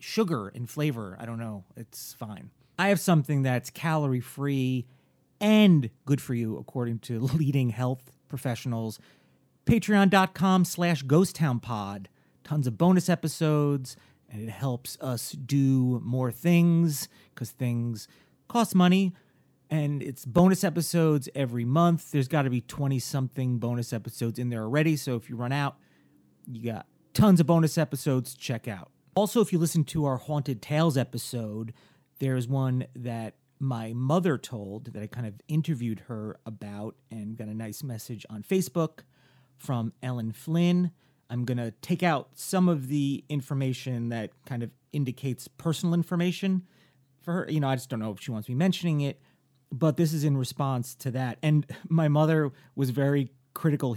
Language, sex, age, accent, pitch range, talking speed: English, male, 30-49, American, 120-155 Hz, 165 wpm